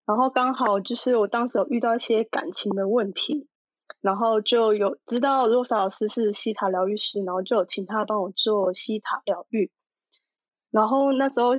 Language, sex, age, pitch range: Chinese, female, 20-39, 200-245 Hz